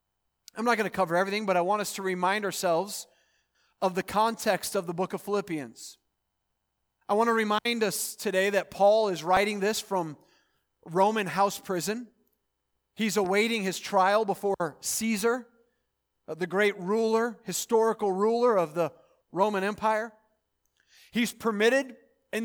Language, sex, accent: English, male, American